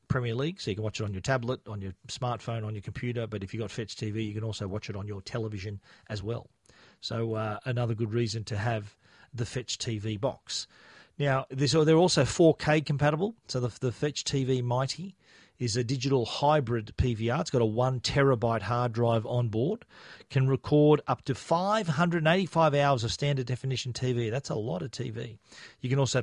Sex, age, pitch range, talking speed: male, 40-59, 115-140 Hz, 195 wpm